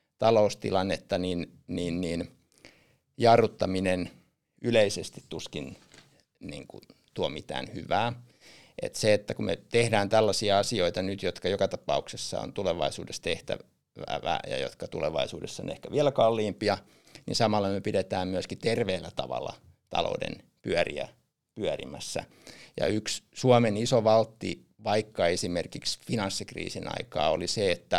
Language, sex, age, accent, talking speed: Finnish, male, 60-79, native, 110 wpm